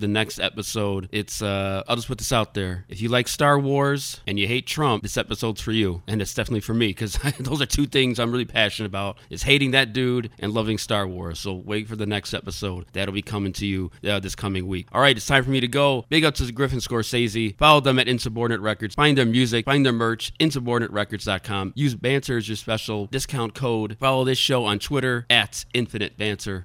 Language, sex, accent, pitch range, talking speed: English, male, American, 105-130 Hz, 230 wpm